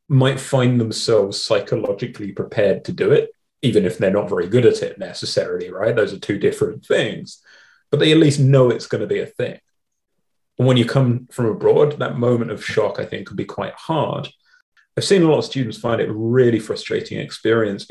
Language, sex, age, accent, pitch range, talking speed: English, male, 30-49, British, 110-150 Hz, 205 wpm